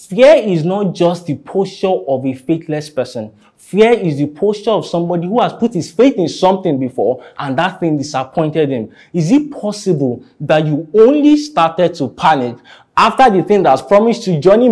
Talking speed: 190 wpm